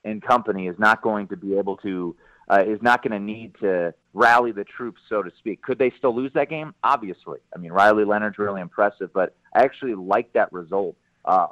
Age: 30-49